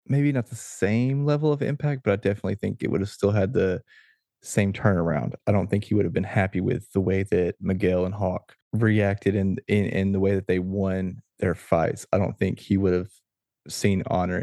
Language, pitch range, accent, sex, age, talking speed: English, 95-110 Hz, American, male, 20-39, 220 wpm